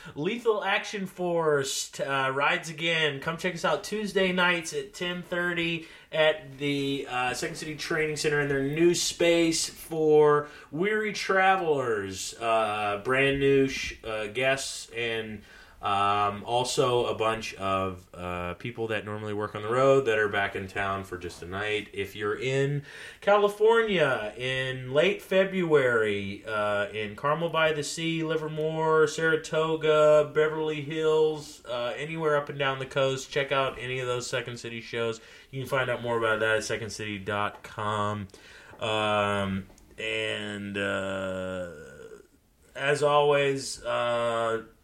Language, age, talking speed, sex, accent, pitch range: English, 30-49, 135 wpm, male, American, 105-155 Hz